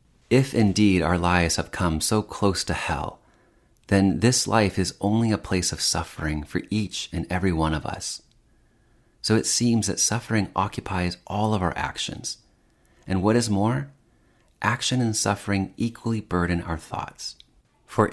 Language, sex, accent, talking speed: English, male, American, 160 wpm